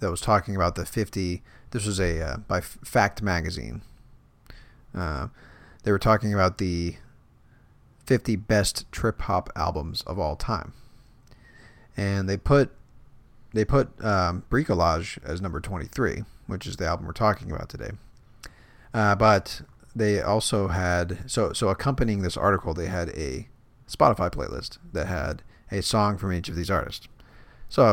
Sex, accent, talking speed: male, American, 150 wpm